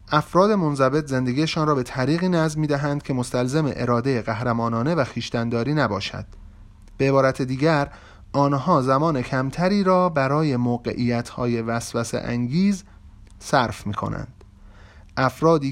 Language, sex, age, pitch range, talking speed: Persian, male, 30-49, 105-150 Hz, 120 wpm